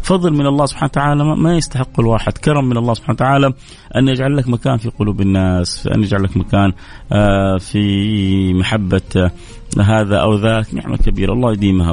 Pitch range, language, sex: 95-130 Hz, Arabic, male